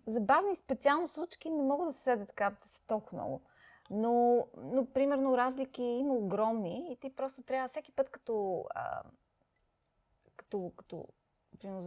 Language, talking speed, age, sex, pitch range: Bulgarian, 135 wpm, 20-39, female, 195-245 Hz